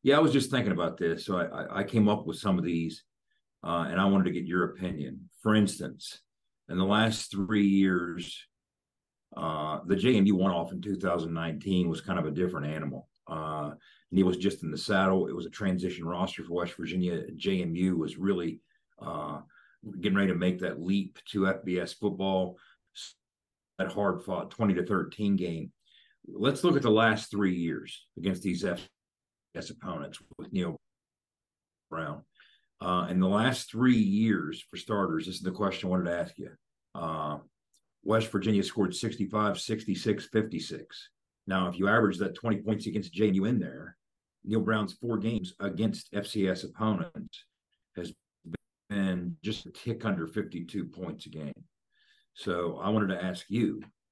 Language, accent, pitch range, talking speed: English, American, 90-105 Hz, 170 wpm